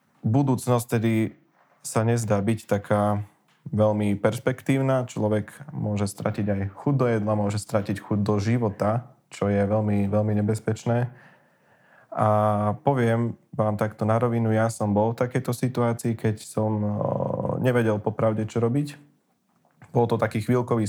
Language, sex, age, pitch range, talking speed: Slovak, male, 20-39, 105-120 Hz, 135 wpm